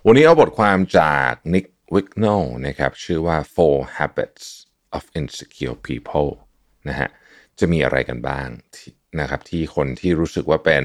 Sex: male